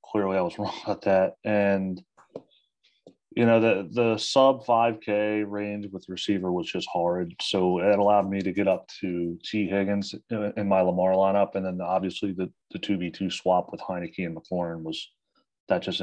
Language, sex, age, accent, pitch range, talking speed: English, male, 30-49, American, 95-110 Hz, 185 wpm